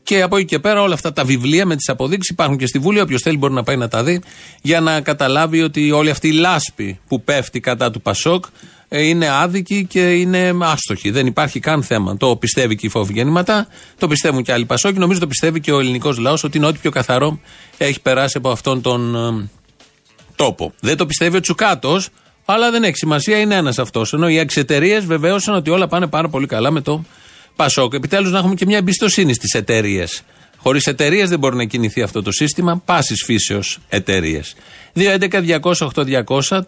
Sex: male